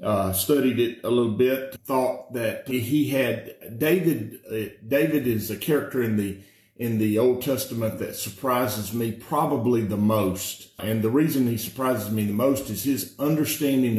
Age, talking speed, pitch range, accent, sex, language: 50-69, 165 wpm, 105-130 Hz, American, male, English